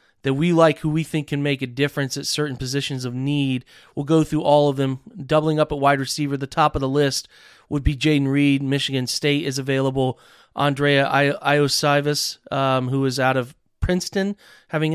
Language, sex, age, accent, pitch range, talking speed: English, male, 30-49, American, 135-150 Hz, 195 wpm